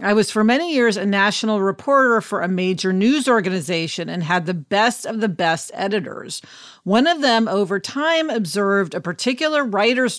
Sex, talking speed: female, 175 wpm